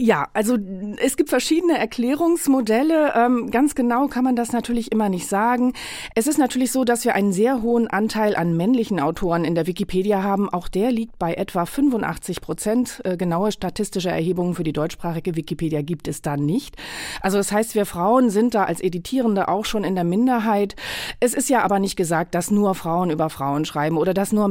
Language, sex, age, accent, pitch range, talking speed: German, female, 40-59, German, 170-220 Hz, 195 wpm